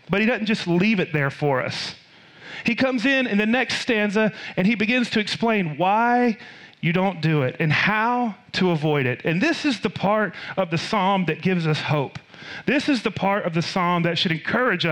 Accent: American